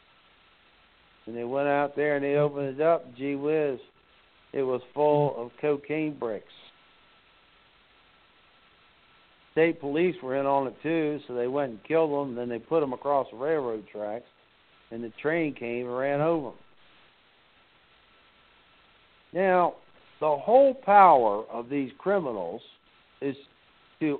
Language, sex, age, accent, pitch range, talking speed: English, male, 60-79, American, 125-160 Hz, 140 wpm